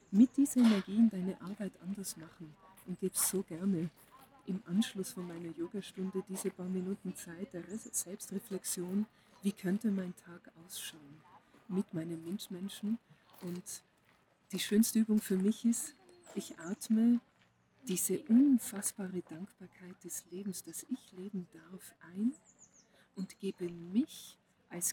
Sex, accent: female, German